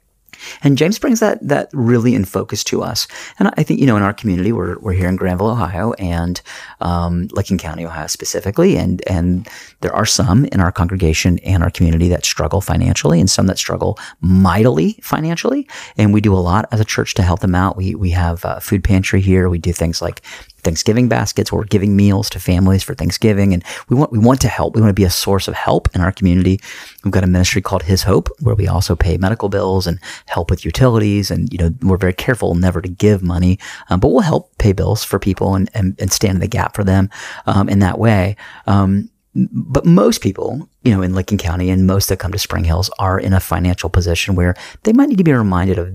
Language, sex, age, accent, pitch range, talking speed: English, male, 30-49, American, 90-105 Hz, 230 wpm